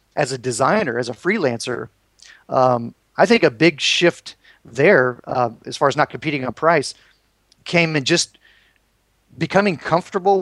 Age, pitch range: 40-59, 140-170 Hz